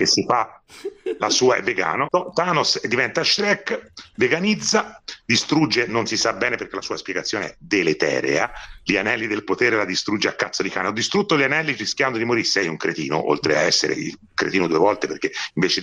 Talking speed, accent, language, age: 195 wpm, native, Italian, 40-59